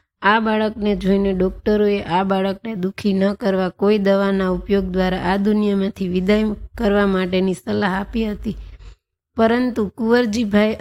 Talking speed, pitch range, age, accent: 130 wpm, 195-215 Hz, 20-39, native